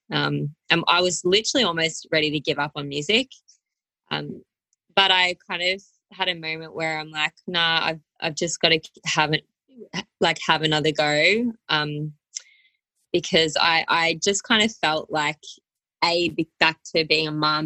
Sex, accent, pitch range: female, Australian, 150-175 Hz